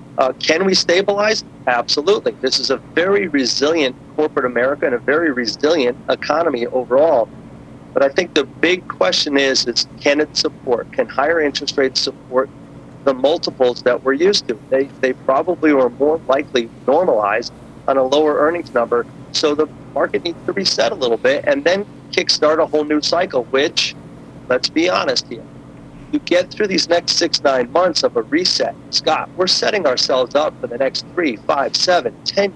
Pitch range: 135-185 Hz